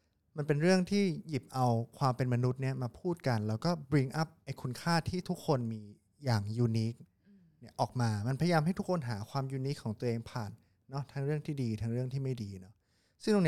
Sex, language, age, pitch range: male, English, 20-39, 105-135 Hz